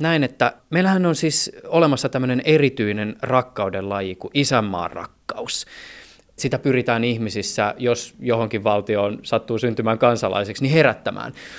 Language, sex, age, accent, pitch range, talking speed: Finnish, male, 20-39, native, 110-150 Hz, 120 wpm